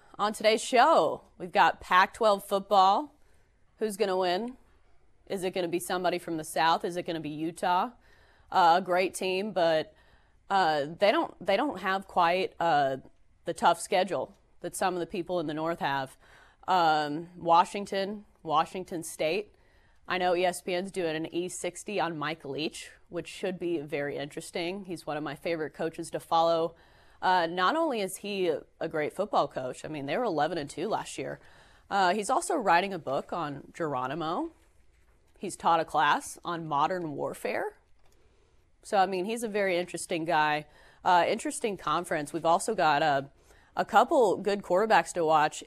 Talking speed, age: 170 wpm, 30-49